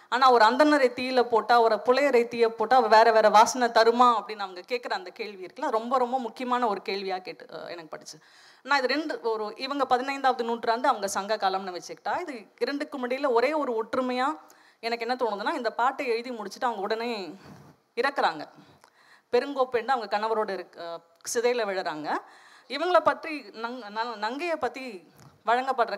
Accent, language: native, Tamil